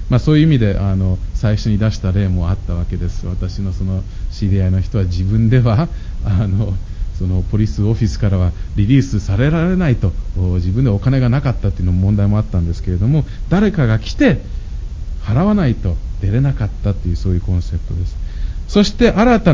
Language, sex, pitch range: Japanese, male, 95-165 Hz